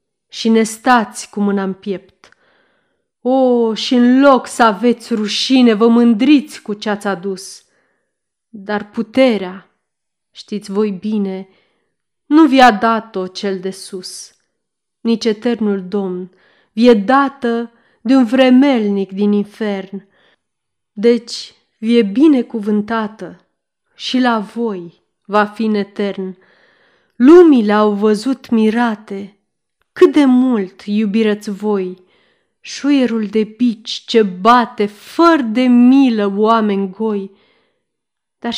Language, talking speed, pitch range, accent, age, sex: Romanian, 105 wpm, 200-245 Hz, native, 30-49, female